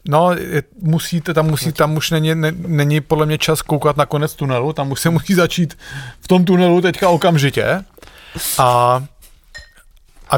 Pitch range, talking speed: 125-150 Hz, 175 wpm